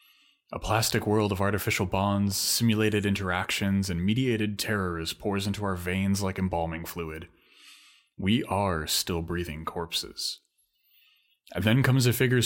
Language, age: English, 30-49